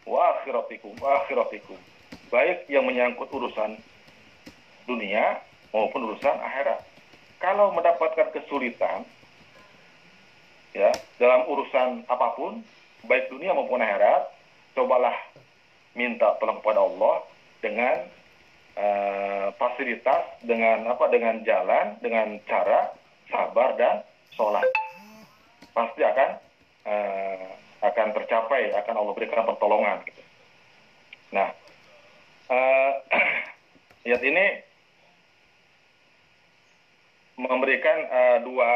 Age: 40-59